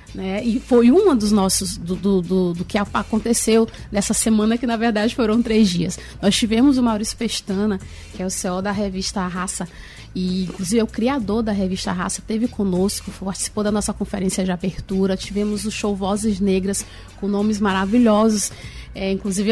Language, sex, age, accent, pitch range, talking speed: Portuguese, female, 30-49, Brazilian, 195-240 Hz, 175 wpm